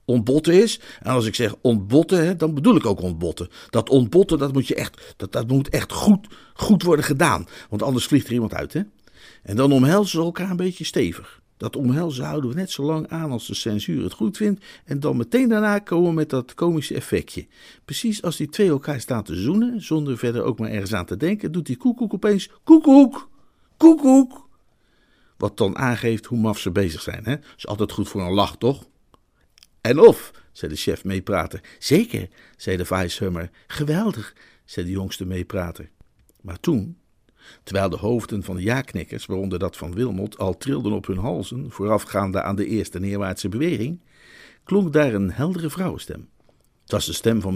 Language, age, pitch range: Dutch, 50-69, 100-165 Hz